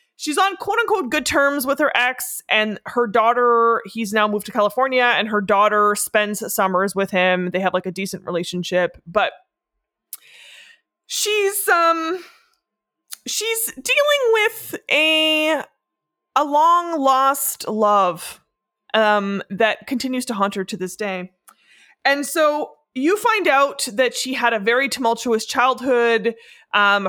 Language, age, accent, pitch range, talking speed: English, 20-39, American, 195-275 Hz, 140 wpm